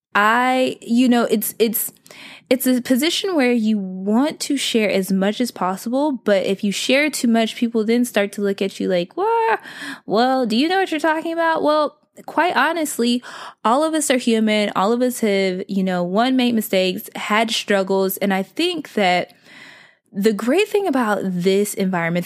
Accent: American